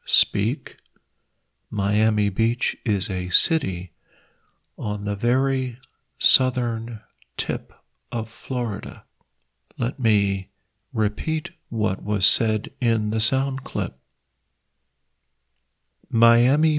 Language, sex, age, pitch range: Thai, male, 50-69, 105-130 Hz